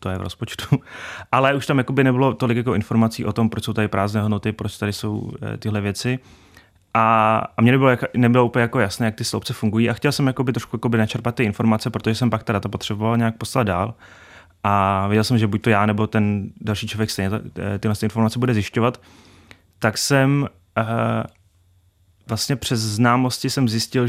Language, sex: Czech, male